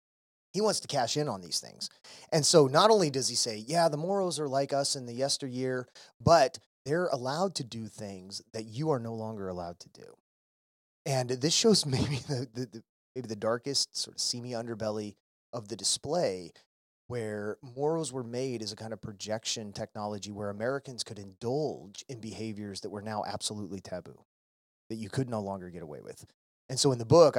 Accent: American